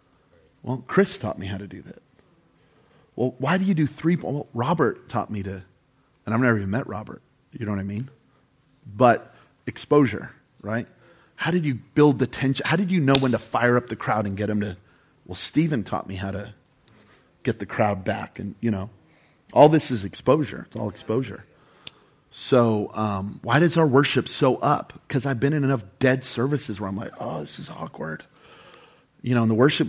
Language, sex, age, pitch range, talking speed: English, male, 30-49, 110-150 Hz, 200 wpm